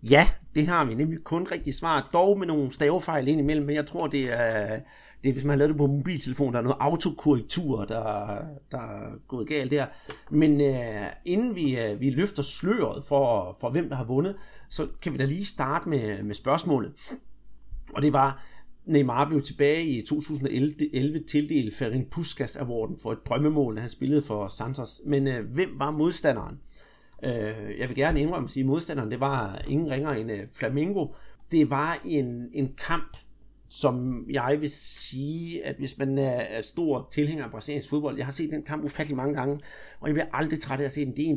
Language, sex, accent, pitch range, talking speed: Danish, male, native, 130-150 Hz, 195 wpm